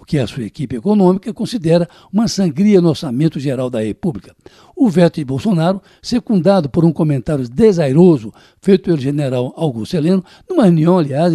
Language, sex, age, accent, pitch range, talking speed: Portuguese, male, 60-79, Brazilian, 150-195 Hz, 165 wpm